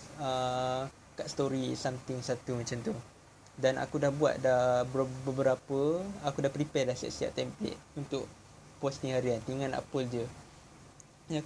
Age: 20-39